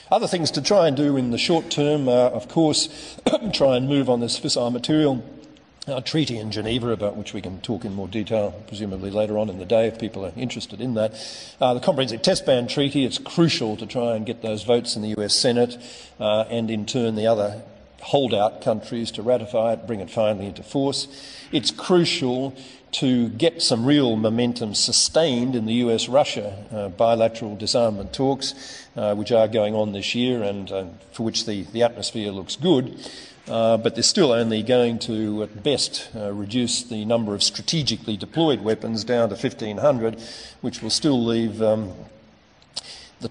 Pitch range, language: 110-130 Hz, English